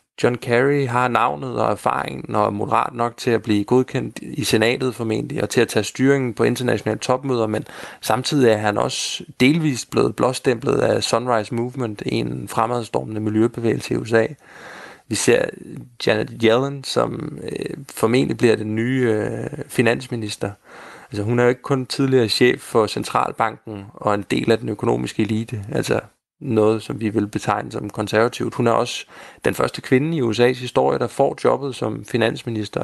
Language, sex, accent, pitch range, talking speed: Danish, male, native, 105-125 Hz, 160 wpm